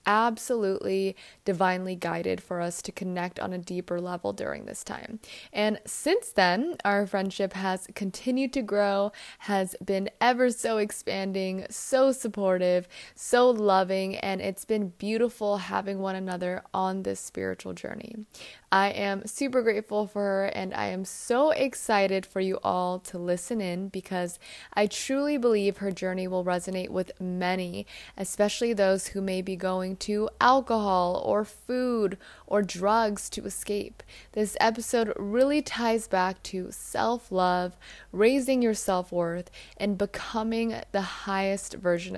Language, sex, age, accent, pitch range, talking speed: English, female, 20-39, American, 185-225 Hz, 140 wpm